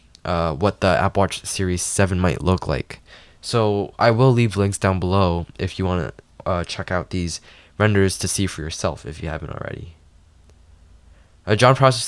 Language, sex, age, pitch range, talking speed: English, male, 10-29, 95-110 Hz, 180 wpm